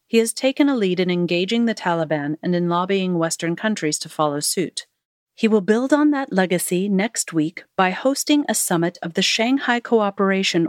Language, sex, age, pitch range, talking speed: English, female, 40-59, 165-215 Hz, 185 wpm